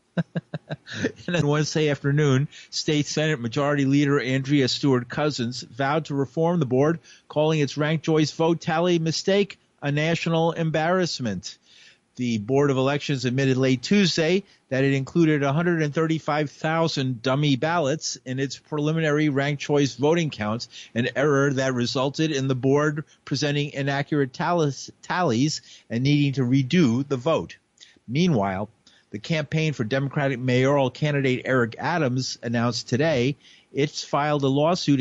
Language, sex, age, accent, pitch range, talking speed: English, male, 50-69, American, 130-160 Hz, 125 wpm